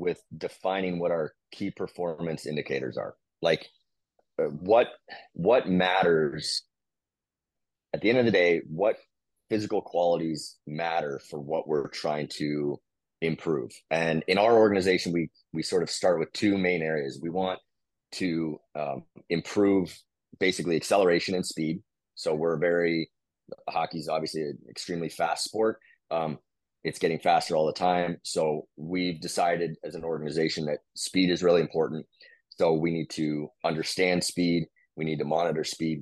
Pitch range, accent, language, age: 80-90 Hz, American, English, 30-49